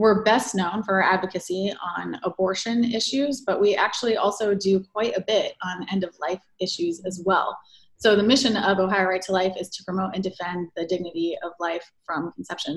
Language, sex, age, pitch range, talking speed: English, female, 20-39, 180-200 Hz, 200 wpm